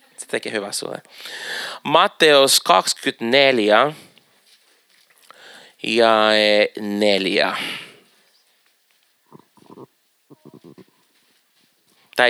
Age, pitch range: 30-49, 105-150 Hz